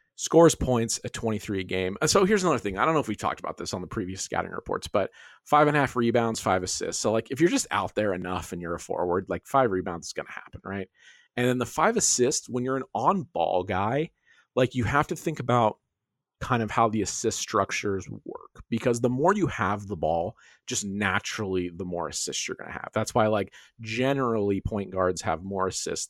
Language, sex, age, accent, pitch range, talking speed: English, male, 40-59, American, 95-125 Hz, 230 wpm